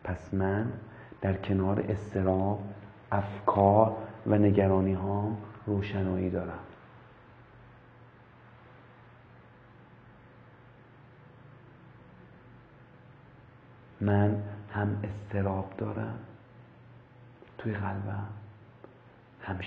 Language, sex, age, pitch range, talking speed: Persian, male, 50-69, 95-120 Hz, 55 wpm